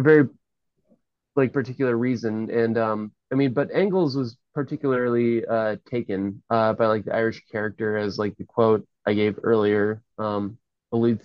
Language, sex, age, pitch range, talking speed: English, male, 20-39, 110-130 Hz, 150 wpm